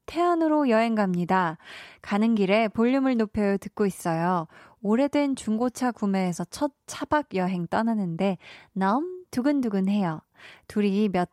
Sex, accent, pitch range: female, native, 195-265 Hz